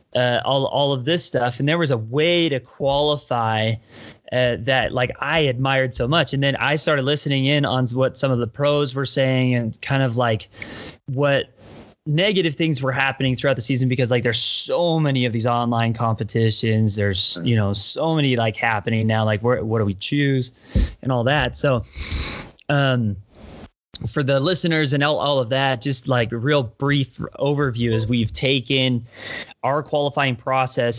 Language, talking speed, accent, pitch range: English, 180 wpm, American, 115-140 Hz